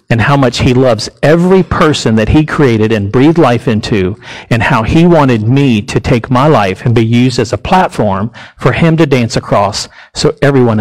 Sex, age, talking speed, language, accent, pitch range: male, 40-59, 200 wpm, English, American, 115-160 Hz